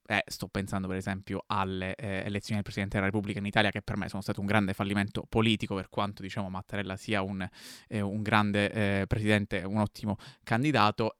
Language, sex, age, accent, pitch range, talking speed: Italian, male, 20-39, native, 100-120 Hz, 200 wpm